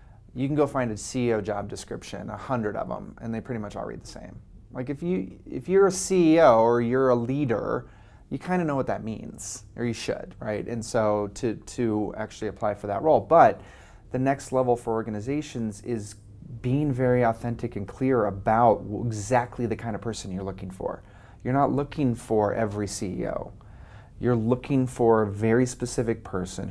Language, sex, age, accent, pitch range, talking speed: English, male, 30-49, American, 105-125 Hz, 190 wpm